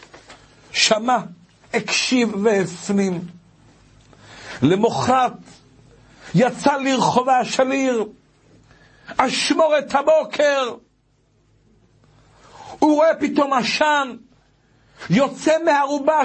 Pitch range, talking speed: 190-285 Hz, 60 wpm